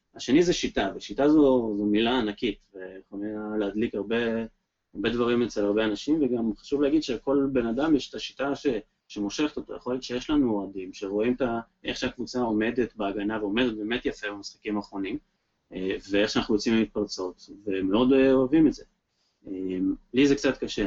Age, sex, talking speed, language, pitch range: 20-39, male, 160 wpm, Hebrew, 100-130 Hz